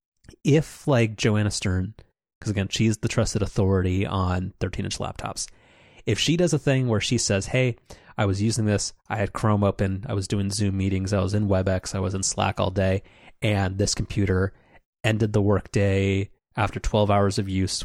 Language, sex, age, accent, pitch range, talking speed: English, male, 20-39, American, 100-115 Hz, 195 wpm